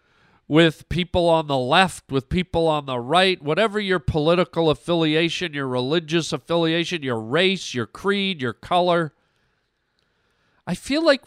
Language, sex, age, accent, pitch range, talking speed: English, male, 50-69, American, 140-205 Hz, 140 wpm